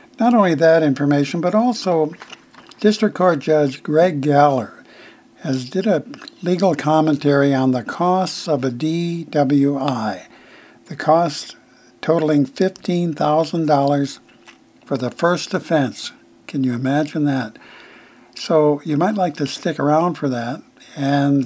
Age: 60-79